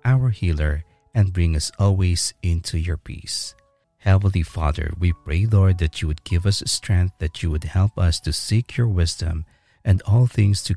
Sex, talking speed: male, 185 wpm